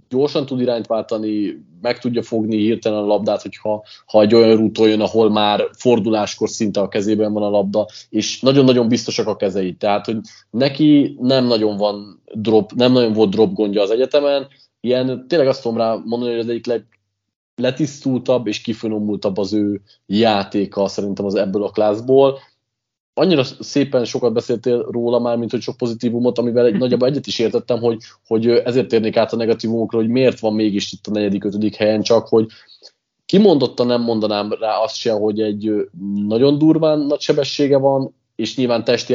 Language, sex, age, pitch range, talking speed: Hungarian, male, 20-39, 105-120 Hz, 175 wpm